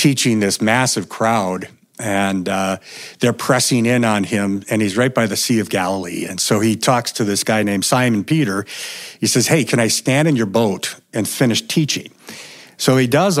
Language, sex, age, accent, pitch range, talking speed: English, male, 50-69, American, 110-155 Hz, 195 wpm